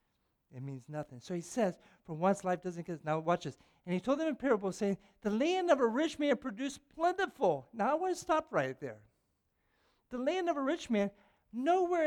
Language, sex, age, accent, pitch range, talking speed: English, male, 60-79, American, 155-255 Hz, 215 wpm